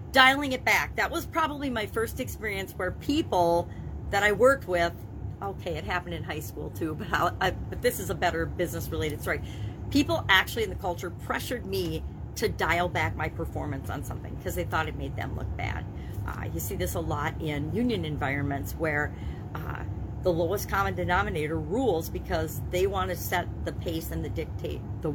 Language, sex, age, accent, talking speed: English, female, 40-59, American, 190 wpm